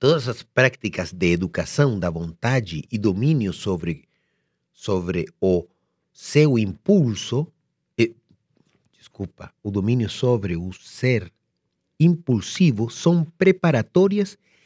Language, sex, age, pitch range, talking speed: Portuguese, male, 40-59, 115-155 Hz, 100 wpm